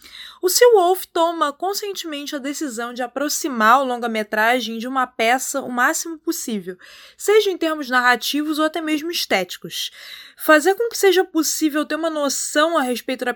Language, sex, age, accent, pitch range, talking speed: Portuguese, female, 20-39, Brazilian, 245-325 Hz, 155 wpm